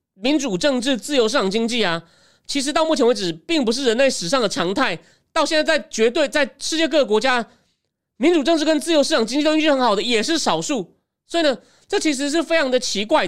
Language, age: Chinese, 30-49